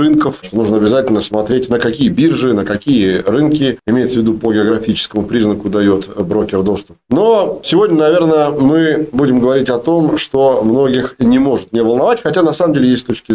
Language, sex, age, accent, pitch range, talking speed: Russian, male, 40-59, native, 110-155 Hz, 180 wpm